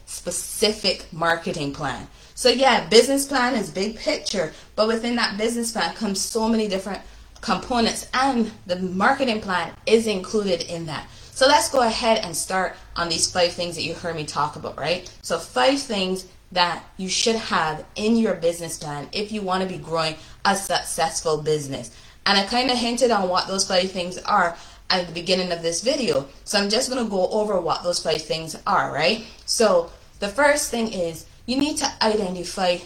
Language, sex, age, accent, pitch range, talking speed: English, female, 30-49, American, 170-225 Hz, 190 wpm